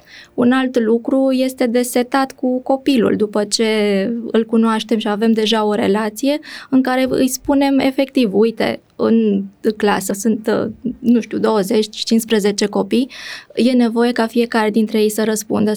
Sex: female